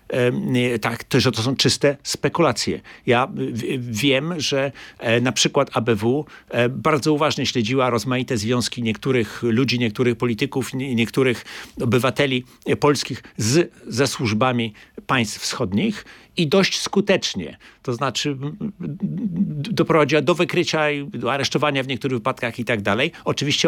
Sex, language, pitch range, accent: male, Polish, 120-150 Hz, native